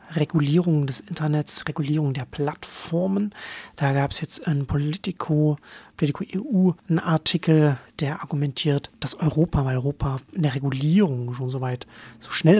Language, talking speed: German, 145 wpm